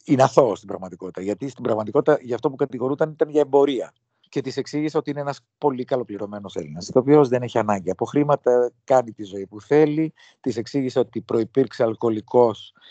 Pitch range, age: 115-145 Hz, 50-69